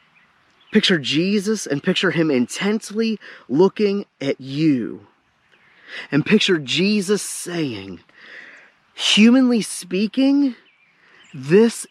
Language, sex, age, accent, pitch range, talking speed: English, male, 30-49, American, 155-225 Hz, 80 wpm